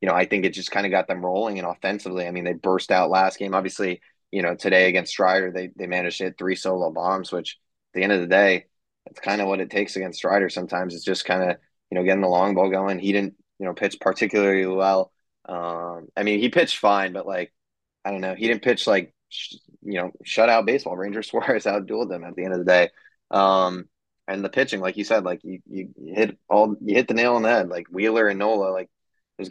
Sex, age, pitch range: male, 20-39, 95-100 Hz